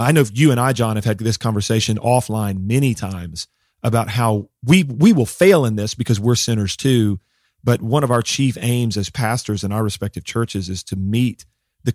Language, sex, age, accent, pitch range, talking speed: English, male, 40-59, American, 100-125 Hz, 205 wpm